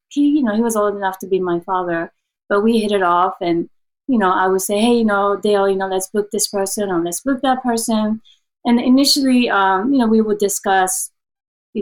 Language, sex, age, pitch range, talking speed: English, female, 30-49, 190-235 Hz, 235 wpm